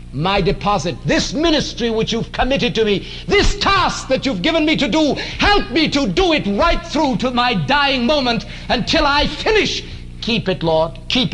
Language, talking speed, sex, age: English, 185 wpm, male, 60-79